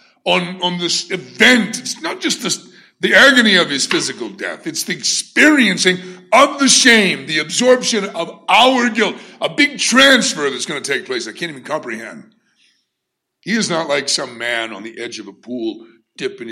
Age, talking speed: 60-79, 180 wpm